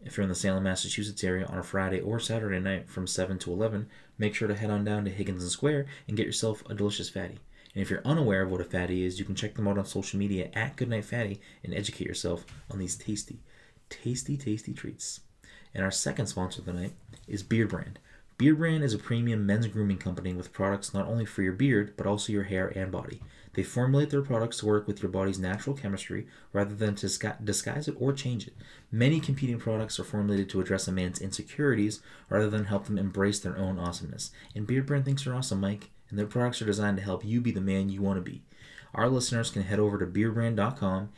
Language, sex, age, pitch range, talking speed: English, male, 20-39, 95-115 Hz, 230 wpm